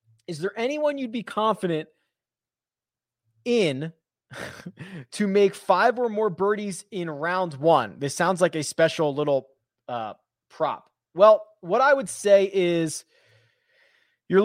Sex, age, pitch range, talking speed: male, 20-39, 150-195 Hz, 130 wpm